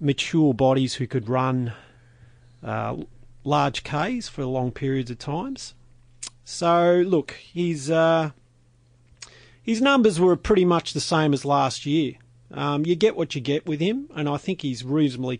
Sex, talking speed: male, 150 wpm